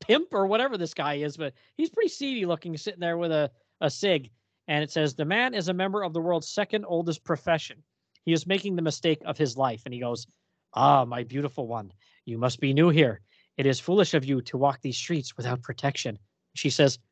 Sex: male